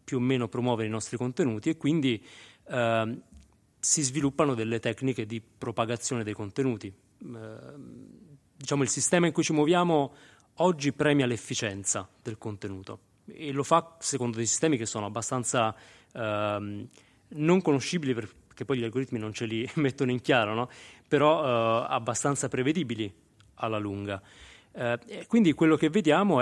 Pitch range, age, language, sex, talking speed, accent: 110-140 Hz, 30-49, Italian, male, 145 wpm, native